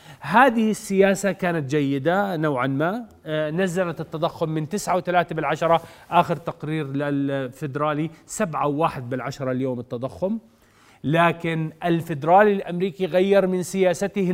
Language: Arabic